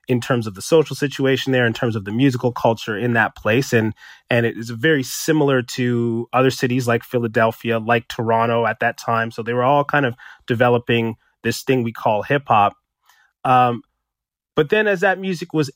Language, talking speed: English, 195 wpm